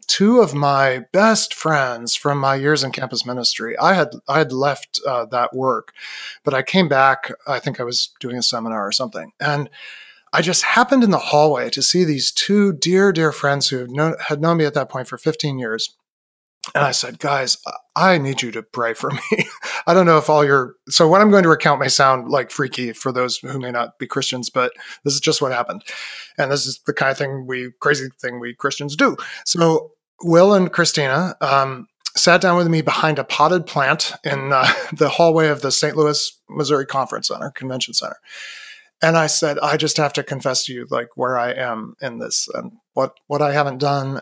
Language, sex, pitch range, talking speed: English, male, 130-165 Hz, 215 wpm